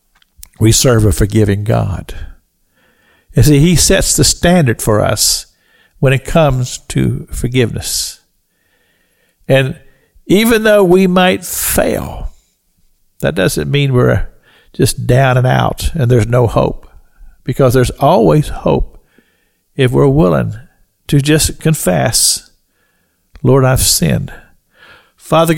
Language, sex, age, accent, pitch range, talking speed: English, male, 60-79, American, 95-145 Hz, 115 wpm